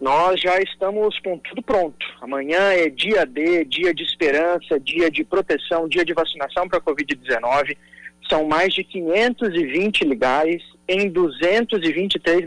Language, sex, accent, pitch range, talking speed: Portuguese, male, Brazilian, 145-185 Hz, 135 wpm